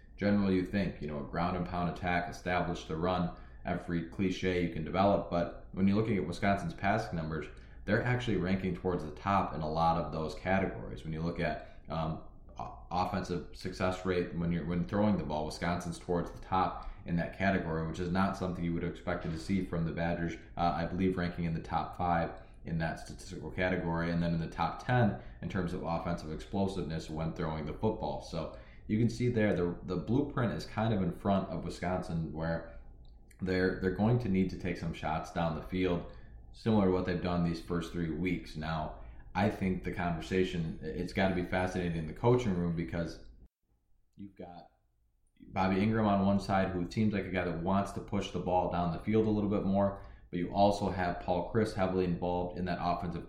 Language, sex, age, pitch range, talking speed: English, male, 20-39, 85-95 Hz, 205 wpm